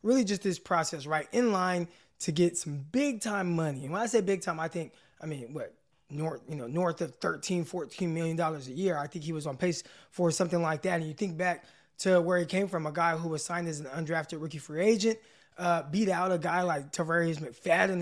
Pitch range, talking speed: 170-220 Hz, 240 wpm